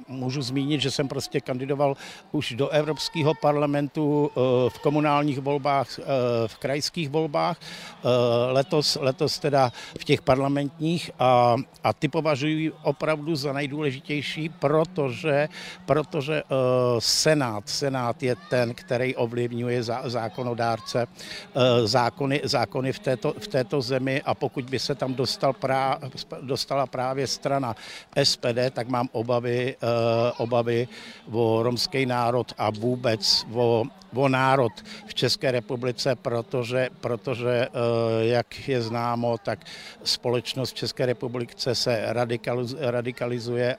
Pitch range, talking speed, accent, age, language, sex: 120-145 Hz, 110 wpm, native, 60-79, Czech, male